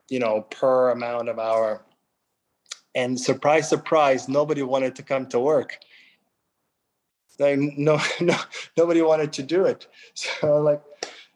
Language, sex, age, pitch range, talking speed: English, male, 20-39, 120-145 Hz, 130 wpm